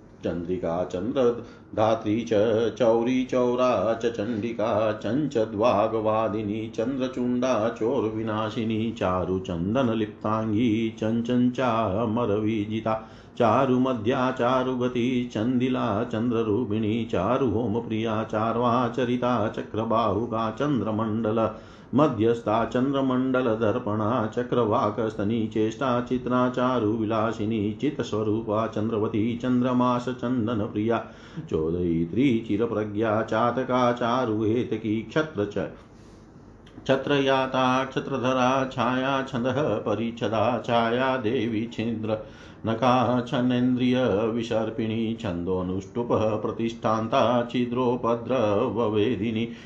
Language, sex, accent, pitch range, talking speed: Hindi, male, native, 110-125 Hz, 65 wpm